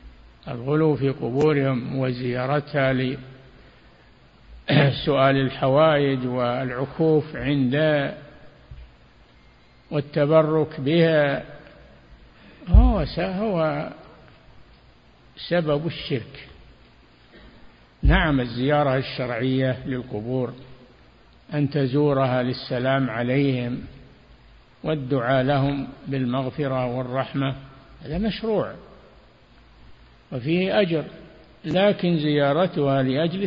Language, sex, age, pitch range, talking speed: Arabic, male, 60-79, 125-155 Hz, 60 wpm